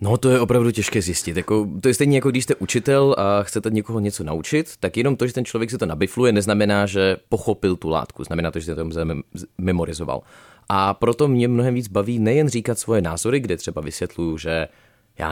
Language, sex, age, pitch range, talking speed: Czech, male, 30-49, 90-115 Hz, 210 wpm